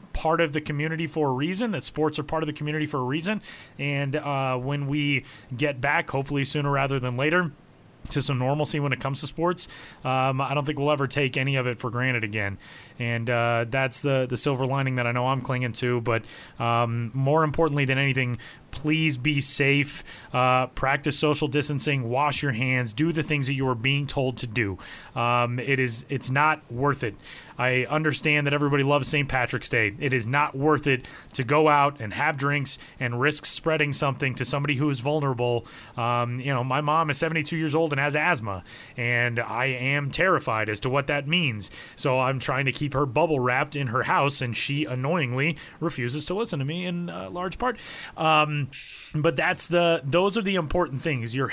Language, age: English, 30-49